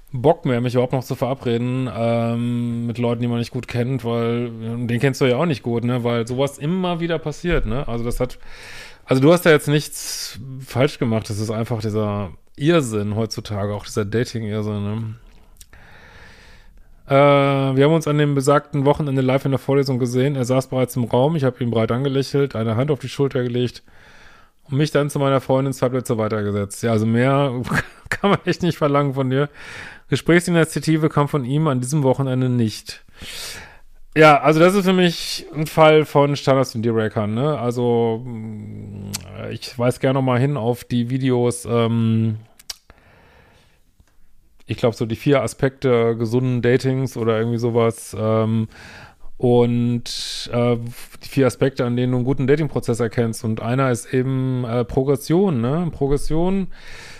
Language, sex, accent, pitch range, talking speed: German, male, German, 115-140 Hz, 170 wpm